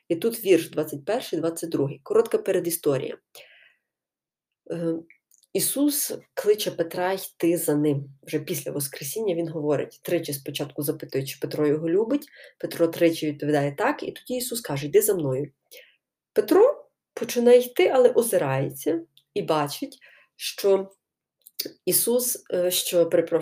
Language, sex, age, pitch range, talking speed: Ukrainian, female, 30-49, 155-255 Hz, 115 wpm